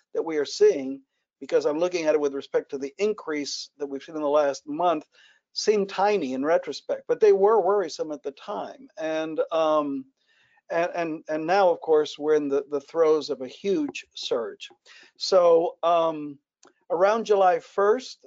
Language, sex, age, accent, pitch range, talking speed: English, male, 50-69, American, 160-230 Hz, 175 wpm